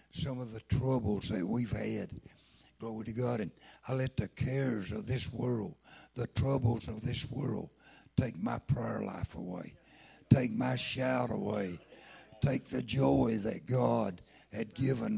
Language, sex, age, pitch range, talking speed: English, male, 60-79, 110-130 Hz, 155 wpm